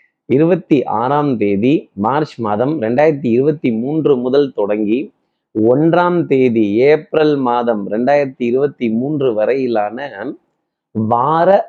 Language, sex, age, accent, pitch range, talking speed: Tamil, male, 30-49, native, 120-150 Hz, 85 wpm